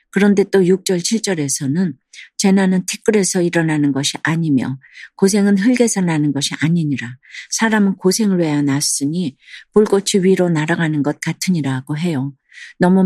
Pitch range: 145-190 Hz